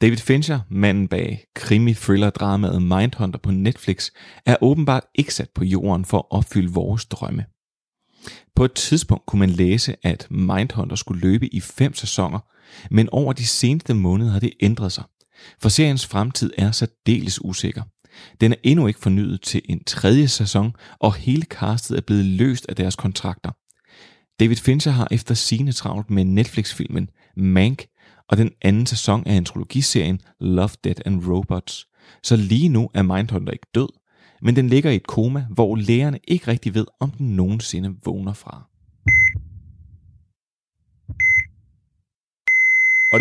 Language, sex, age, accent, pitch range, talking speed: Danish, male, 30-49, native, 95-125 Hz, 150 wpm